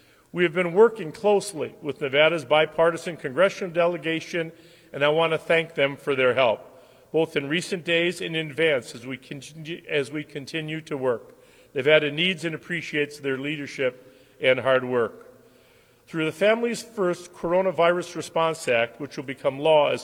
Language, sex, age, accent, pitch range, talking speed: English, male, 40-59, American, 145-175 Hz, 160 wpm